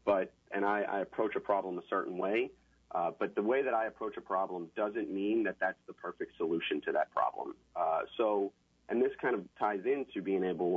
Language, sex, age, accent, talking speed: English, male, 40-59, American, 215 wpm